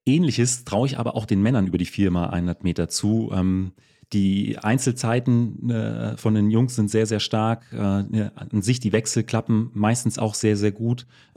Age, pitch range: 30-49, 95-110 Hz